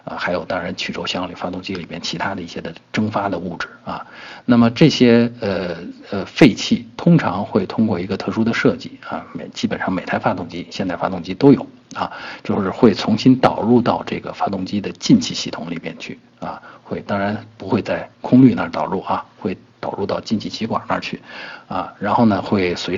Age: 50-69